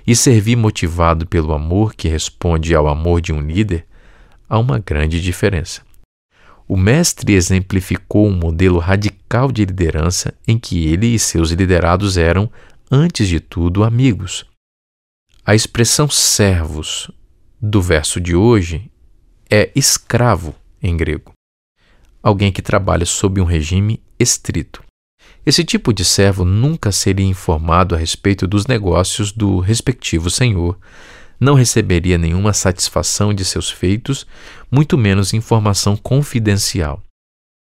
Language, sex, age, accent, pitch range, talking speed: Portuguese, male, 40-59, Brazilian, 85-115 Hz, 125 wpm